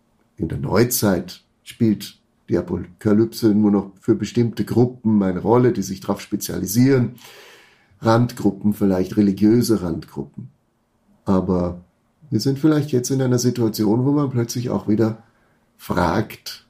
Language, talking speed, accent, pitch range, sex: German, 125 wpm, German, 100-130 Hz, male